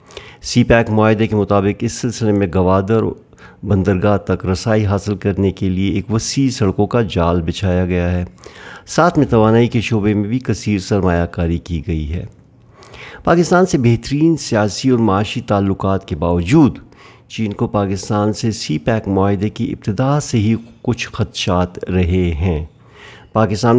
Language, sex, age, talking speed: Urdu, male, 50-69, 155 wpm